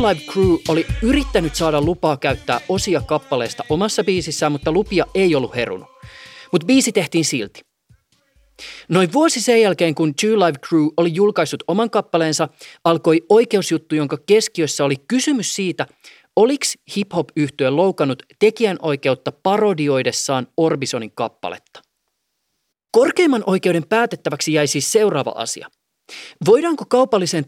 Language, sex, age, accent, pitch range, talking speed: Finnish, male, 30-49, native, 145-195 Hz, 125 wpm